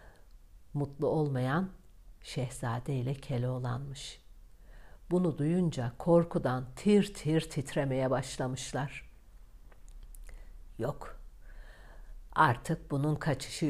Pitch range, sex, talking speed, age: 120-160 Hz, female, 70 wpm, 60-79